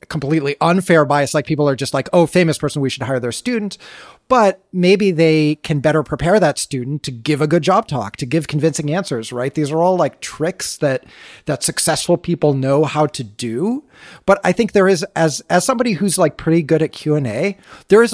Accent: American